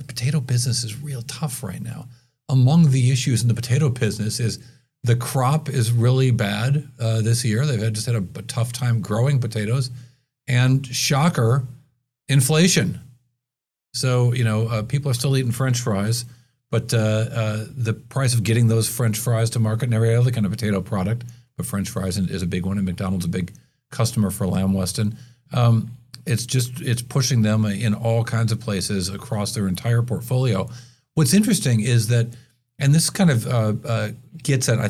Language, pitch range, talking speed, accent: English, 110-130 Hz, 185 wpm, American